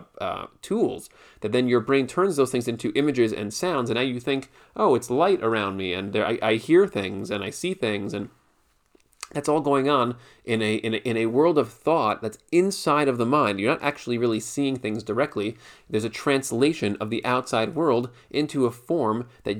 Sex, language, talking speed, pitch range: male, English, 210 wpm, 110-135 Hz